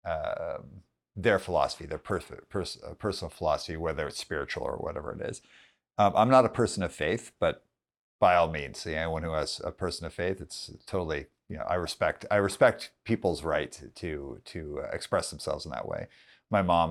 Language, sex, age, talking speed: English, male, 50-69, 190 wpm